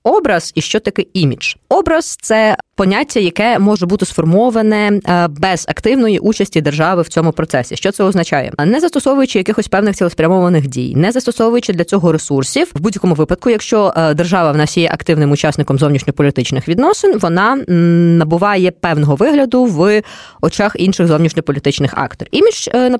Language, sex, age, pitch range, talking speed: Ukrainian, female, 20-39, 160-230 Hz, 150 wpm